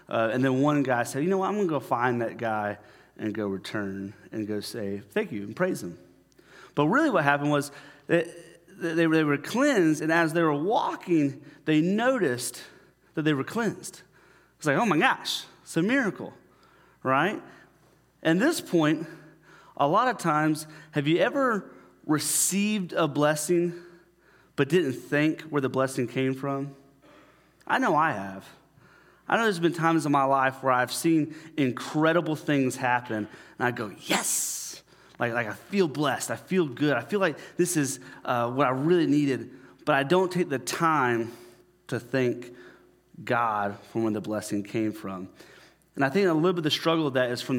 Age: 30-49